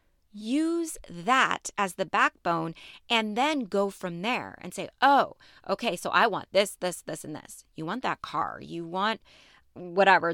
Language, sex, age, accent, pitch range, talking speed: English, female, 30-49, American, 170-230 Hz, 170 wpm